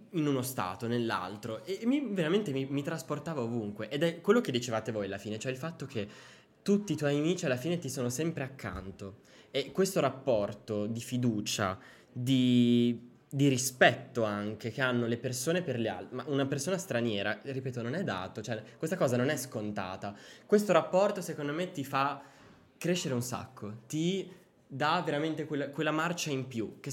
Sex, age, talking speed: male, 20-39, 180 wpm